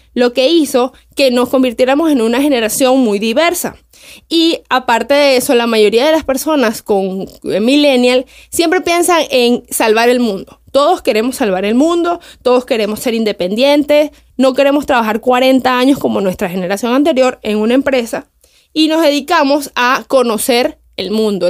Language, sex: Spanish, female